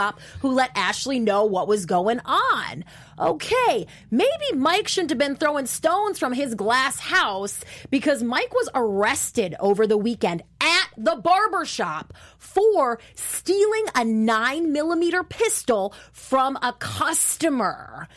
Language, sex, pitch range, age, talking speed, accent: English, female, 210-285 Hz, 30-49, 130 wpm, American